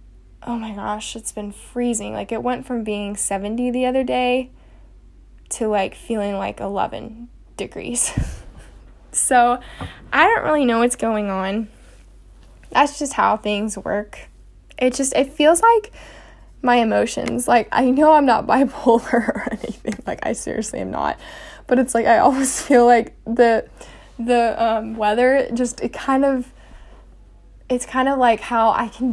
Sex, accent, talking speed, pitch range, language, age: female, American, 155 wpm, 205-250 Hz, English, 10-29